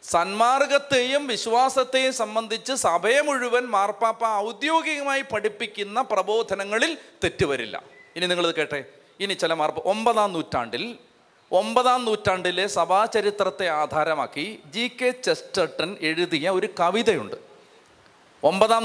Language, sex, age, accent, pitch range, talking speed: Malayalam, male, 30-49, native, 175-235 Hz, 90 wpm